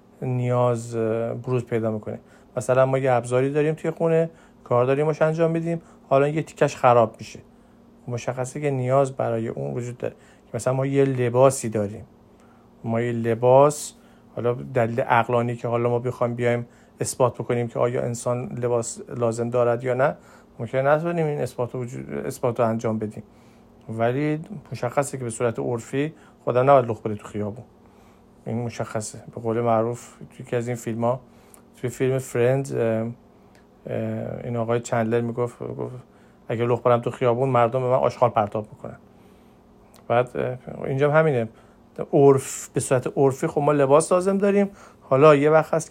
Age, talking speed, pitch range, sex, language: 50-69, 150 wpm, 115-140 Hz, male, Persian